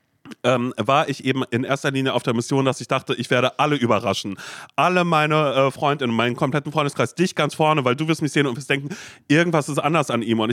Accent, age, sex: German, 30-49, male